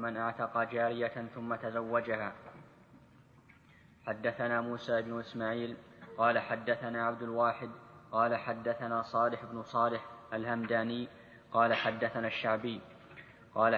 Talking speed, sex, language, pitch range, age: 100 wpm, male, Arabic, 115-120 Hz, 10-29